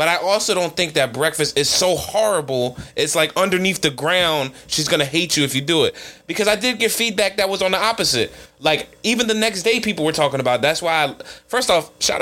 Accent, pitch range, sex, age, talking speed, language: American, 115-155 Hz, male, 20-39, 245 wpm, English